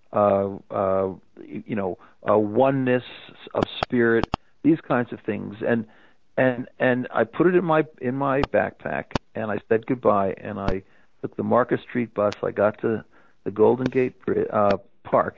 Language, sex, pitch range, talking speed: English, male, 105-125 Hz, 165 wpm